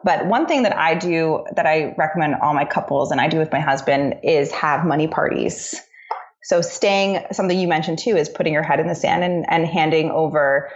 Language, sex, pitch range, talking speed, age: English, female, 155-190 Hz, 220 wpm, 20-39